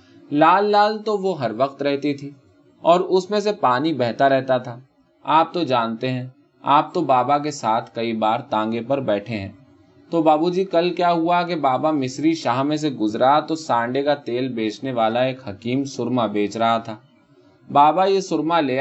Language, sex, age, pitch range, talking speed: Urdu, male, 20-39, 120-165 Hz, 190 wpm